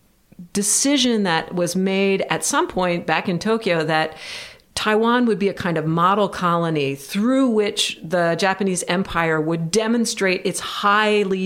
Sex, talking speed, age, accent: female, 145 wpm, 40-59, American